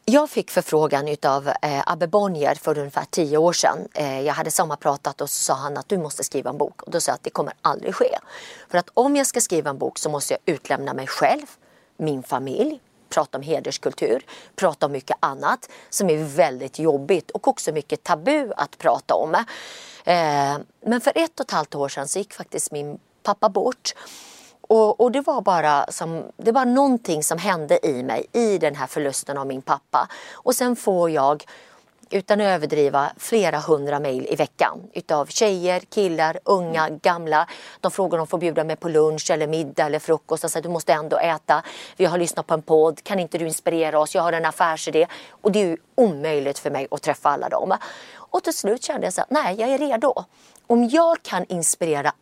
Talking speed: 205 wpm